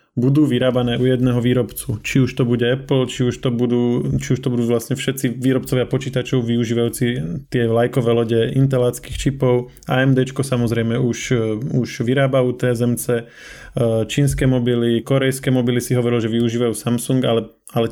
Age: 20-39